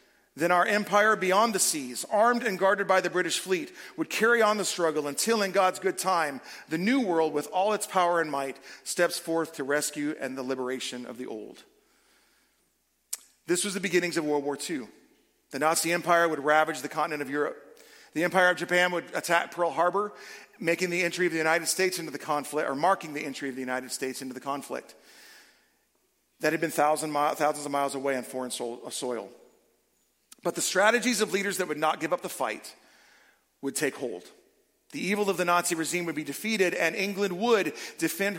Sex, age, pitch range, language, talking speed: male, 40-59, 150-200 Hz, English, 195 wpm